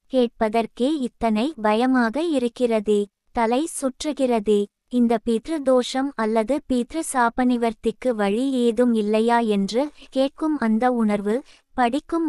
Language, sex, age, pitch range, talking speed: Tamil, female, 20-39, 225-265 Hz, 95 wpm